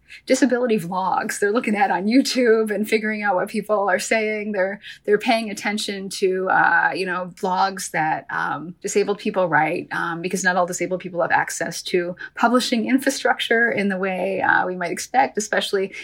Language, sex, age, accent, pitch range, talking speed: English, female, 30-49, American, 185-220 Hz, 175 wpm